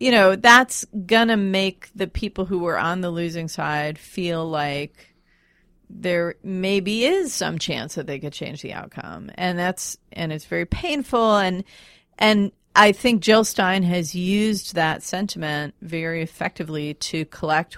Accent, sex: American, female